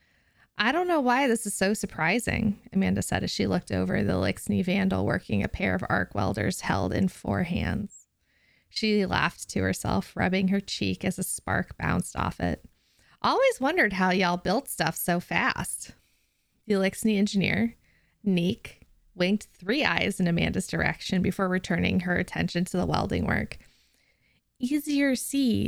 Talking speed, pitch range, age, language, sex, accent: 160 wpm, 175-215 Hz, 20-39, English, female, American